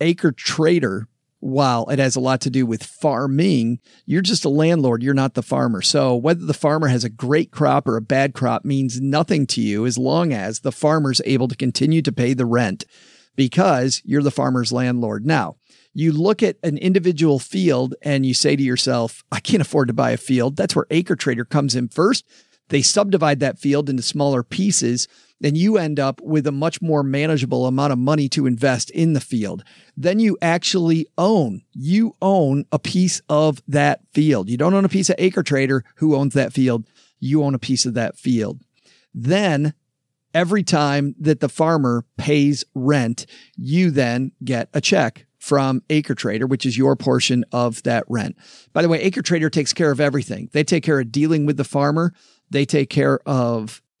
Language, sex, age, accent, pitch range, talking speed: English, male, 40-59, American, 130-160 Hz, 195 wpm